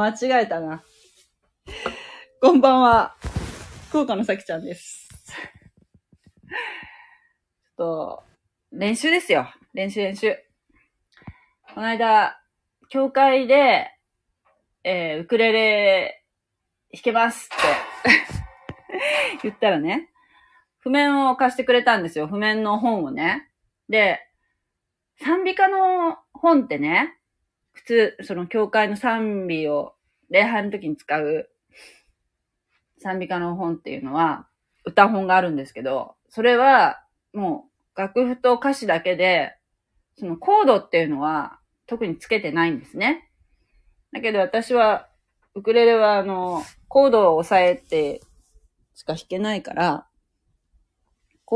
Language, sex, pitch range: Japanese, female, 190-285 Hz